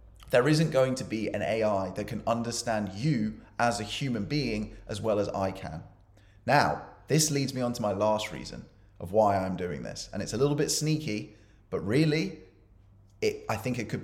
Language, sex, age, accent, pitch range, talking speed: English, male, 20-39, British, 100-125 Hz, 200 wpm